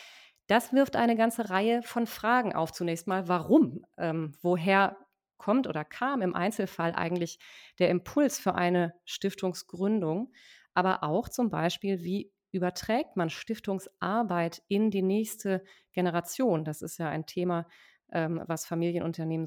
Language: German